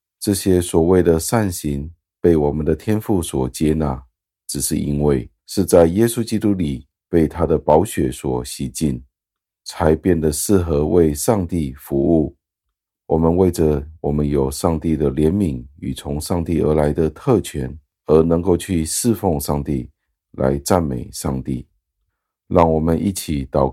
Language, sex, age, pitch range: Chinese, male, 50-69, 70-90 Hz